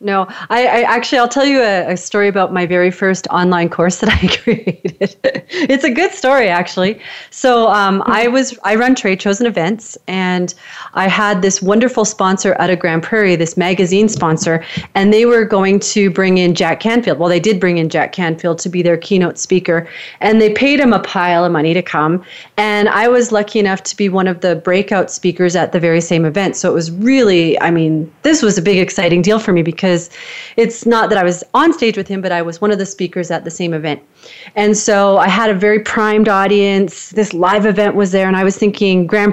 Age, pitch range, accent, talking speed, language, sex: 30-49, 175-215 Hz, American, 225 wpm, English, female